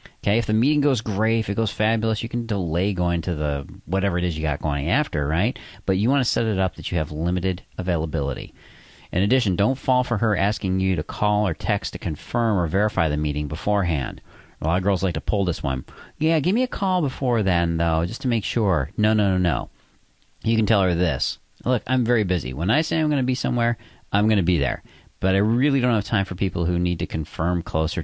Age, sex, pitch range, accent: 40-59, male, 80-115 Hz, American